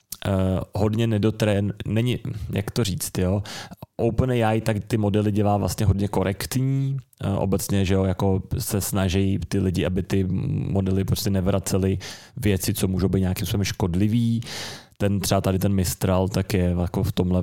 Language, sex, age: Czech, male, 30-49